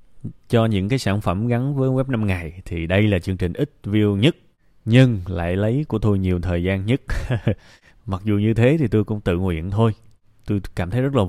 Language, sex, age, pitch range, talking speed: Vietnamese, male, 20-39, 95-115 Hz, 225 wpm